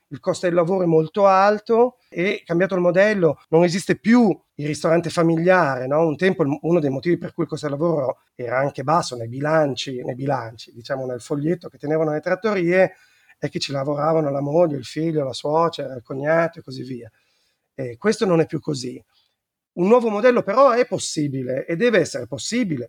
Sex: male